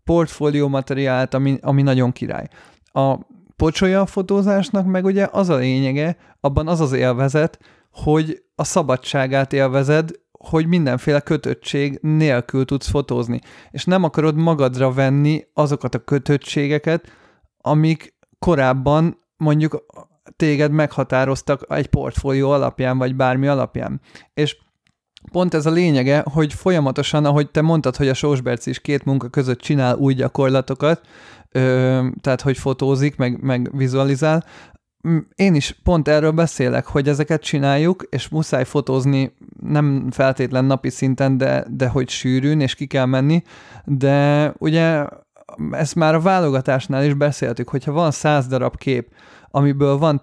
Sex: male